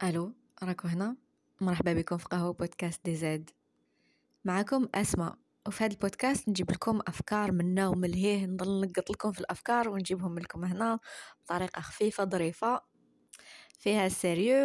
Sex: female